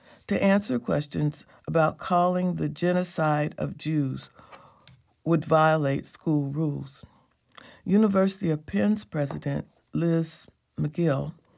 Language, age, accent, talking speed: English, 60-79, American, 100 wpm